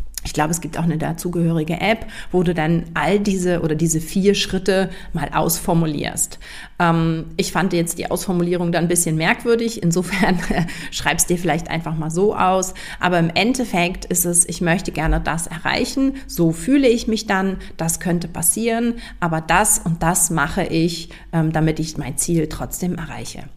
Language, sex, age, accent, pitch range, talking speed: German, female, 40-59, German, 165-190 Hz, 170 wpm